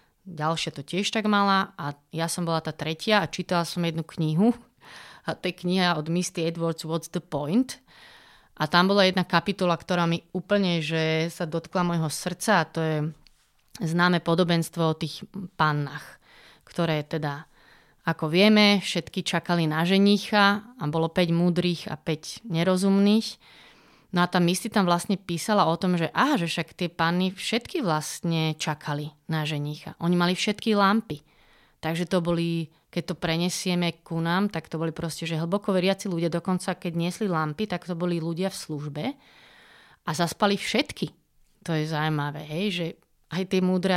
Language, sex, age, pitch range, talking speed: Slovak, female, 30-49, 160-185 Hz, 165 wpm